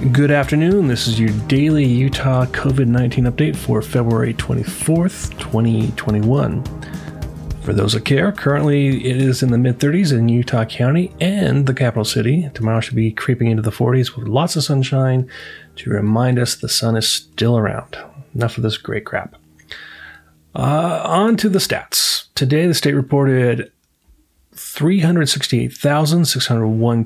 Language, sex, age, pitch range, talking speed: English, male, 30-49, 115-140 Hz, 140 wpm